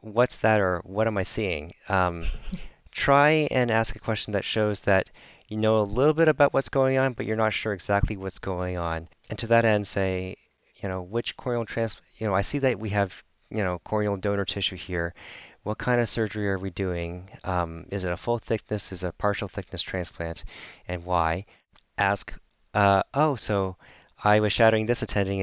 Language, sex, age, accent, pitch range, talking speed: English, male, 30-49, American, 90-110 Hz, 205 wpm